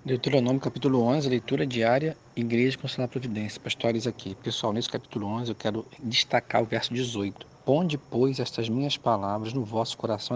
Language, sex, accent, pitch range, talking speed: Portuguese, male, Brazilian, 115-135 Hz, 175 wpm